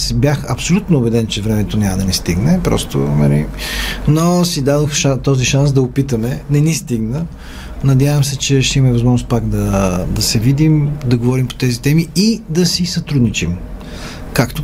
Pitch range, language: 120-140 Hz, Bulgarian